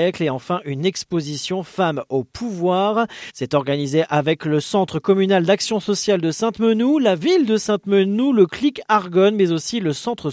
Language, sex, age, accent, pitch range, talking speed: French, male, 40-59, French, 150-215 Hz, 165 wpm